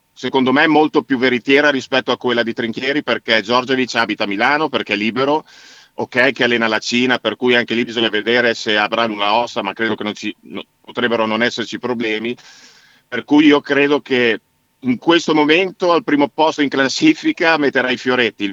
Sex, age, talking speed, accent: male, 40-59, 195 wpm, native